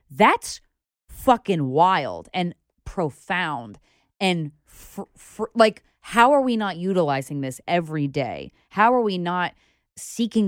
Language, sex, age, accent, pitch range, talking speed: English, female, 20-39, American, 160-225 Hz, 125 wpm